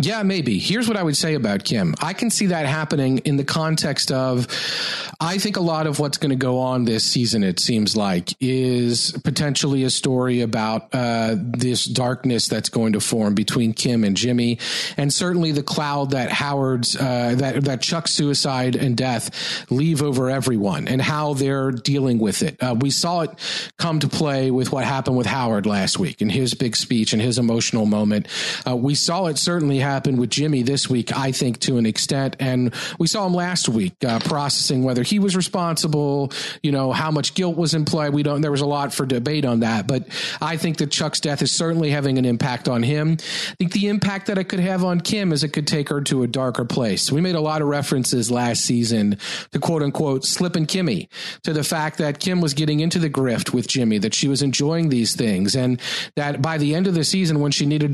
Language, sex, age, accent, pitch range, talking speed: English, male, 40-59, American, 125-165 Hz, 220 wpm